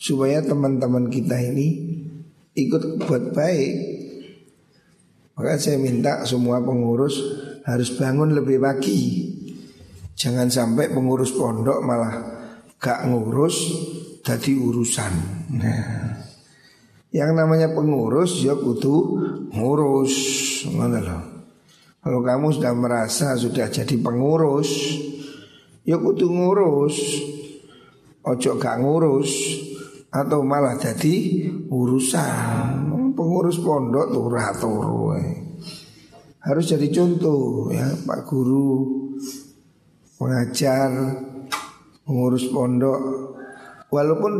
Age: 50-69